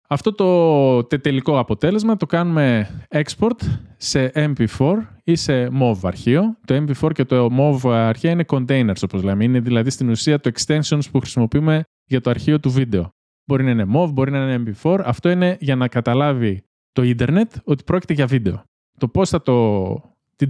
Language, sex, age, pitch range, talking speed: Greek, male, 20-39, 115-160 Hz, 175 wpm